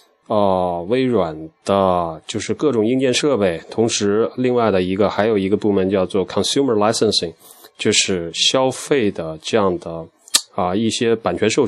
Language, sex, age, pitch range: Chinese, male, 20-39, 100-125 Hz